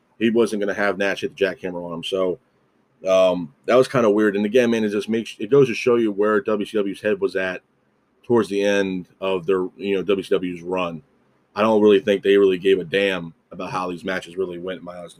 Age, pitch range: 30-49, 100-125 Hz